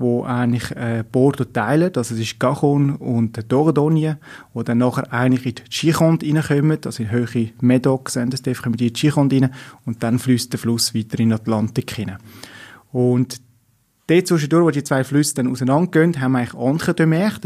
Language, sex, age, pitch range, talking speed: German, male, 30-49, 120-145 Hz, 185 wpm